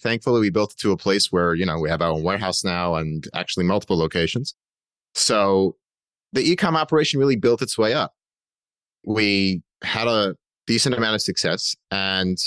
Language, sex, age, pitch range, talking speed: English, male, 30-49, 95-120 Hz, 180 wpm